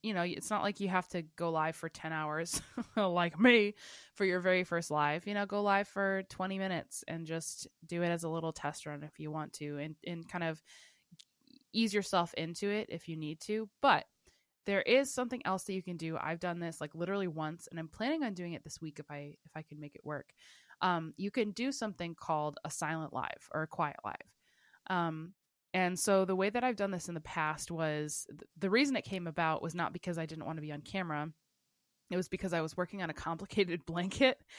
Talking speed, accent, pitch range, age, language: 230 wpm, American, 160-195 Hz, 20-39, English